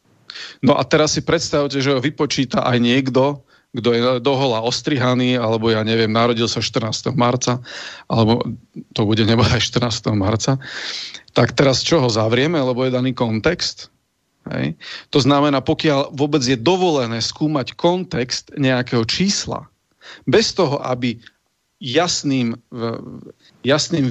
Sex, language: male, Slovak